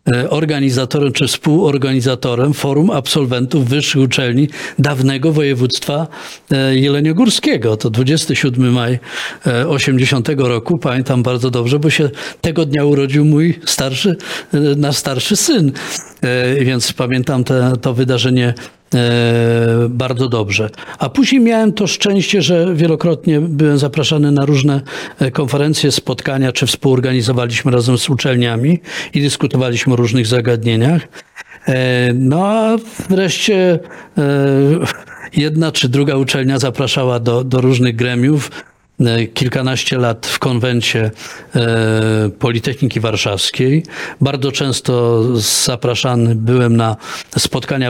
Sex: male